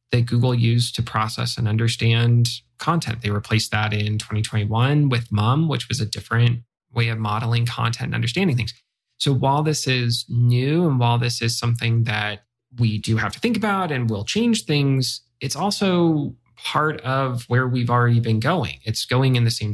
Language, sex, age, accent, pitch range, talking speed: English, male, 30-49, American, 115-135 Hz, 185 wpm